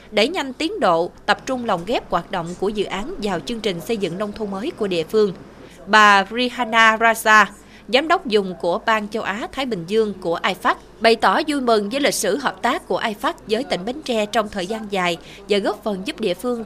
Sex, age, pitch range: female, 20-39, 200-245 Hz